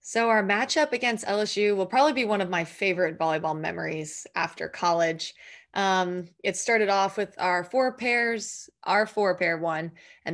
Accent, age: American, 20-39